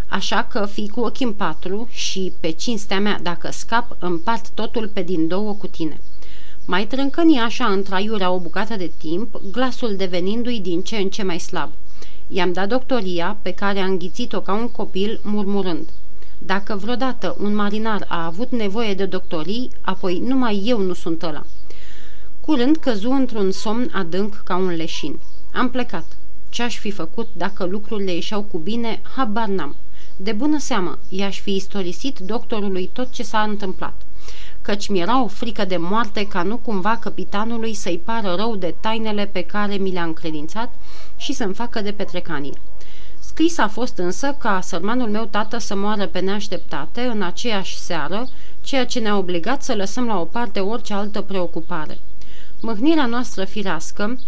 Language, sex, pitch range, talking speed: Romanian, female, 185-230 Hz, 165 wpm